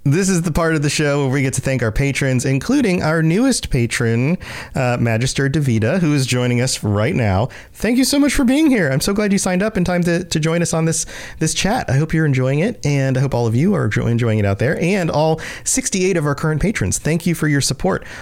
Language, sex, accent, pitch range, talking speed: English, male, American, 120-165 Hz, 260 wpm